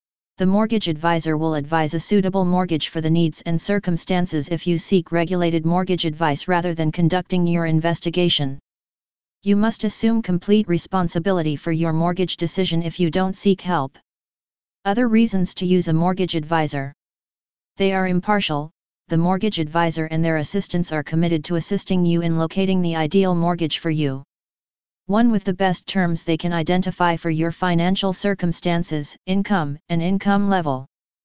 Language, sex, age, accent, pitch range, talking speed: English, female, 40-59, American, 165-190 Hz, 155 wpm